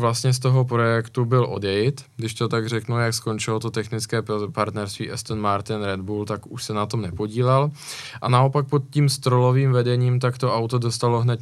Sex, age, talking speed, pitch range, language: male, 20-39, 190 wpm, 110-125 Hz, Czech